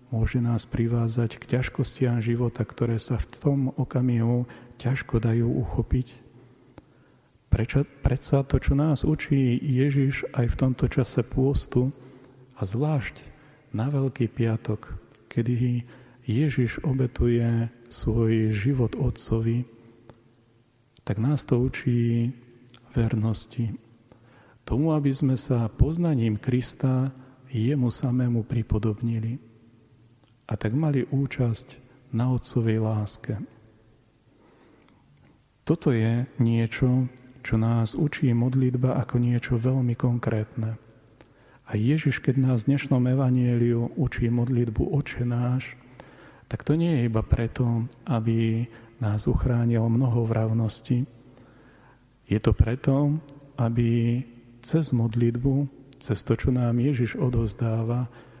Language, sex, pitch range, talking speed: Slovak, male, 115-130 Hz, 105 wpm